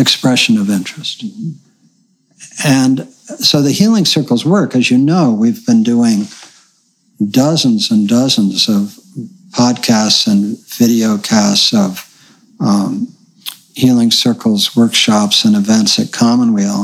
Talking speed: 110 wpm